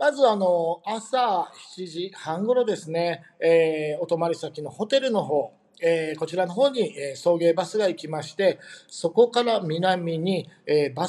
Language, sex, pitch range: Japanese, male, 155-215 Hz